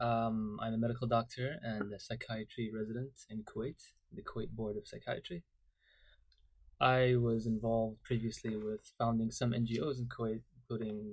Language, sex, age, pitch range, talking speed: English, male, 20-39, 110-125 Hz, 145 wpm